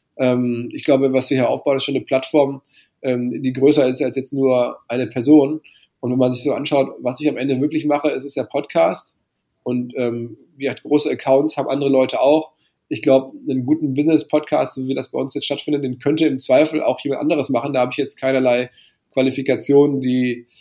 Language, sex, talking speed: German, male, 210 wpm